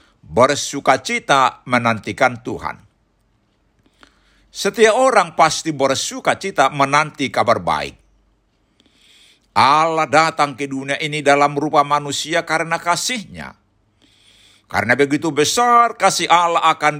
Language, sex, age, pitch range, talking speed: Indonesian, male, 60-79, 115-160 Hz, 90 wpm